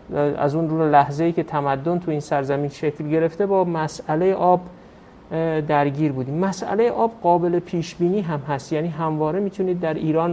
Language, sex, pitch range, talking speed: Persian, male, 155-185 Hz, 165 wpm